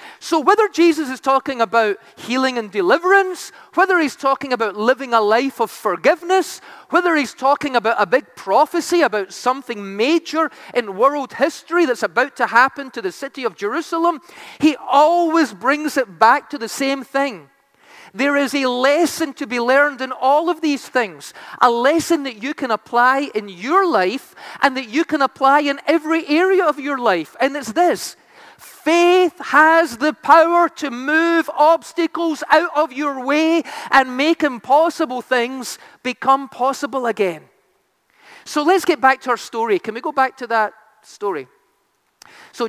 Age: 40-59